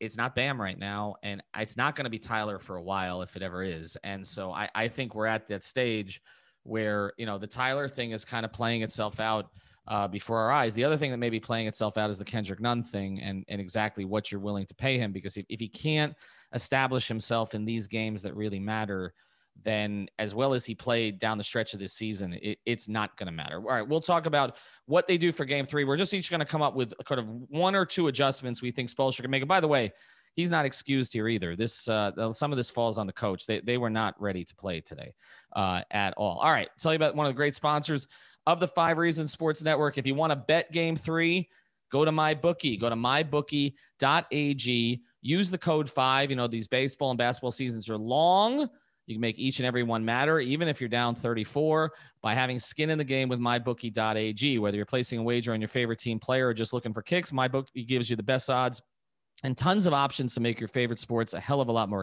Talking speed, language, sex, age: 250 wpm, English, male, 30-49